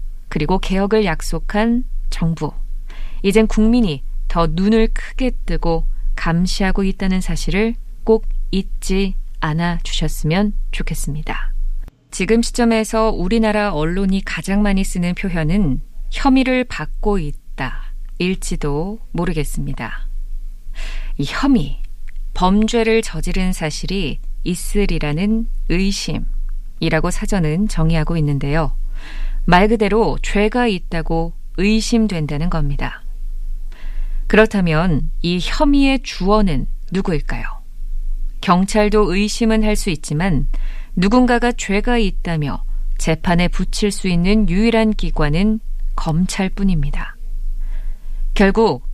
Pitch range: 165-215 Hz